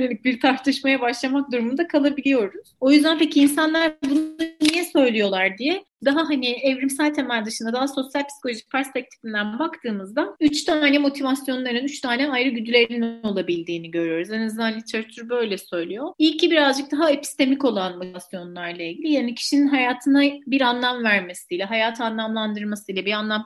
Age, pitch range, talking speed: 30-49, 225-280 Hz, 145 wpm